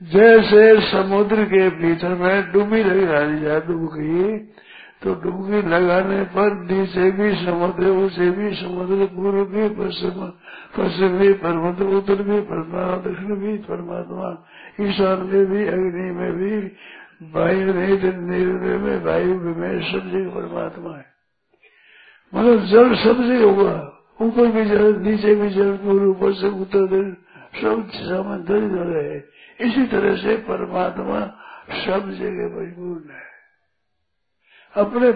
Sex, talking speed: male, 110 wpm